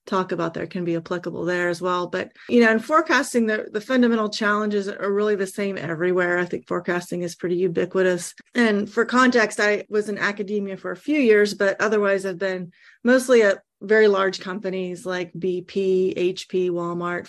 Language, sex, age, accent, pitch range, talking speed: English, female, 30-49, American, 180-210 Hz, 185 wpm